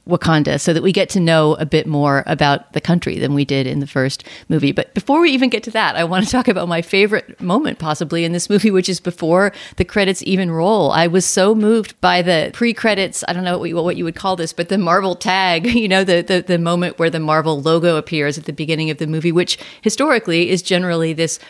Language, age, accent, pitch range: English, 40-59, American, 160-195 Hz